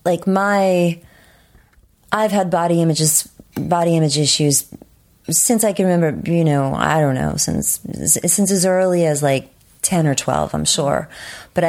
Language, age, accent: English, 30-49, American